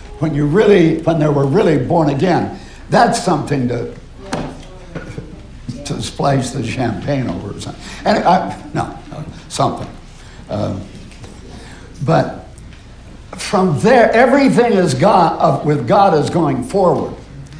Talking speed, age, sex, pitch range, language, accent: 120 wpm, 60-79, male, 140-190 Hz, English, American